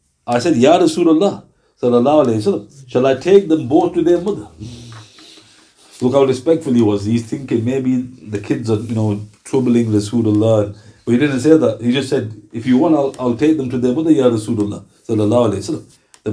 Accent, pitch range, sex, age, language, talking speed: Indian, 115-155 Hz, male, 50-69, English, 175 wpm